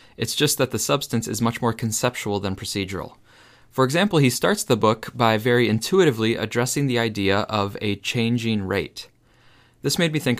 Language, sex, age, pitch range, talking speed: English, male, 20-39, 105-130 Hz, 180 wpm